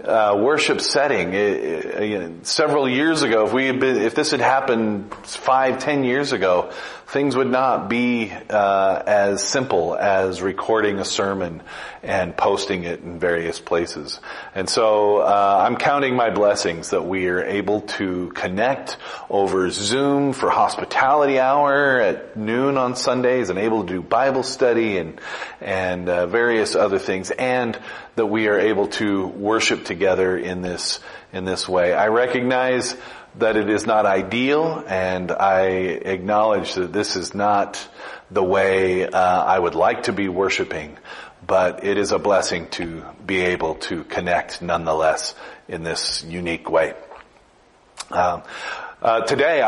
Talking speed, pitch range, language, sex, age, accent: 150 wpm, 95-130 Hz, English, male, 30-49, American